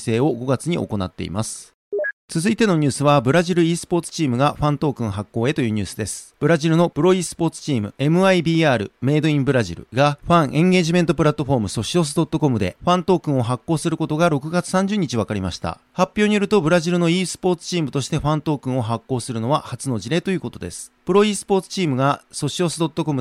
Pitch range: 125-170 Hz